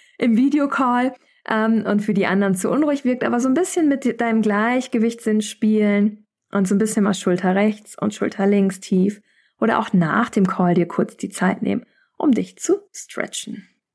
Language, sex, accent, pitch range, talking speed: German, female, German, 205-280 Hz, 180 wpm